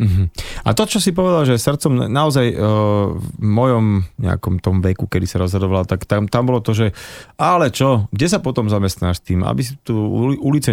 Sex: male